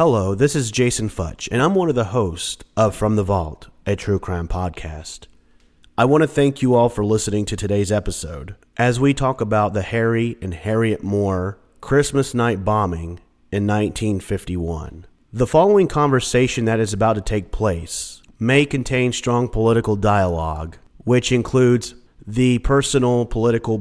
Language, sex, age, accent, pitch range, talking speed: English, male, 30-49, American, 95-120 Hz, 160 wpm